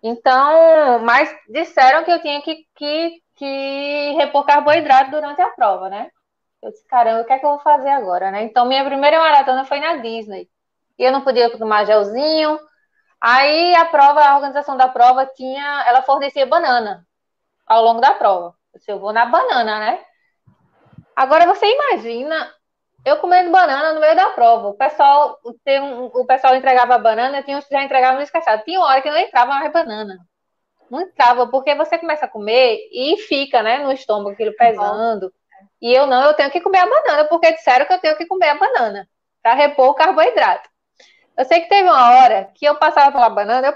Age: 20-39